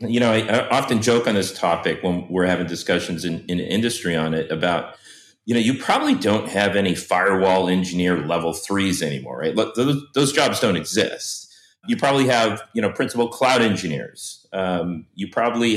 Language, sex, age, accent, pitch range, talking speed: English, male, 40-59, American, 95-135 Hz, 185 wpm